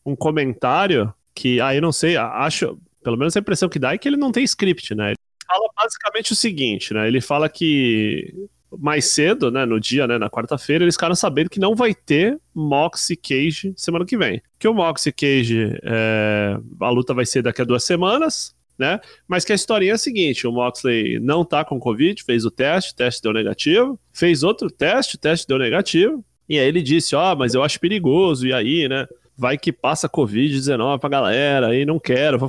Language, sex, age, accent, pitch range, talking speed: Portuguese, male, 20-39, Brazilian, 125-200 Hz, 210 wpm